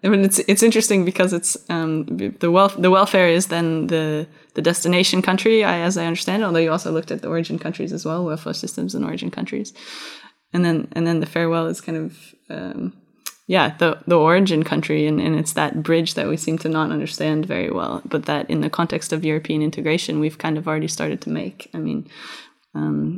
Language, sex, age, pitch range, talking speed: English, female, 10-29, 155-175 Hz, 215 wpm